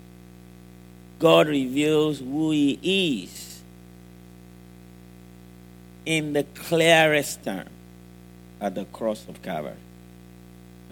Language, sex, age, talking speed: English, male, 50-69, 75 wpm